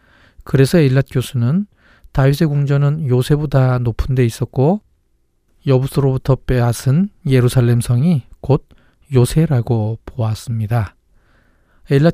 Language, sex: Korean, male